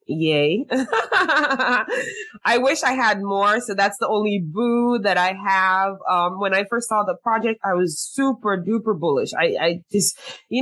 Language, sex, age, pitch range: English, female, 20-39, 175-245 Hz